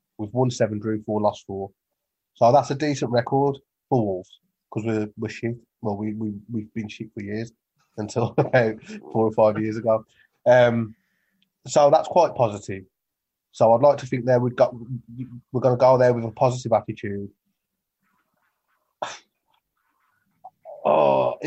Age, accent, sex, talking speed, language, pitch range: 20-39, British, male, 155 wpm, English, 105-130 Hz